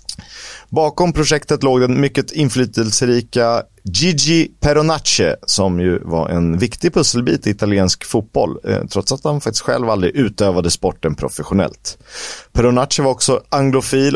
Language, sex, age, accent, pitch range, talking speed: Swedish, male, 30-49, native, 105-135 Hz, 125 wpm